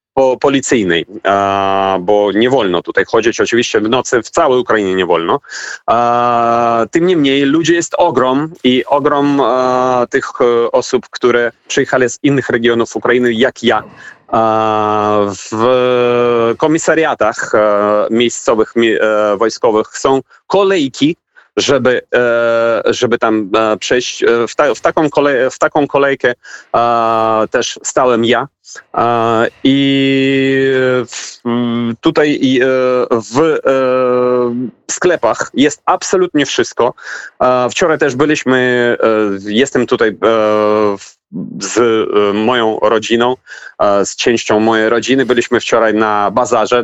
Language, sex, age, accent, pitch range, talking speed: Polish, male, 30-49, native, 115-135 Hz, 95 wpm